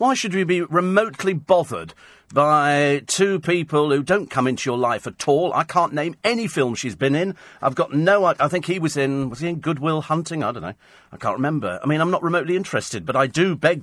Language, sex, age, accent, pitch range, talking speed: English, male, 40-59, British, 130-175 Hz, 240 wpm